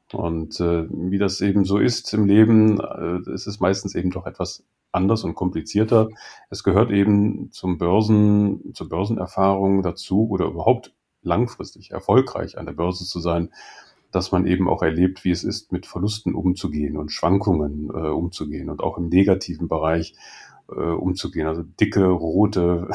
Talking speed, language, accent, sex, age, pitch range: 155 wpm, German, German, male, 40-59, 90-100 Hz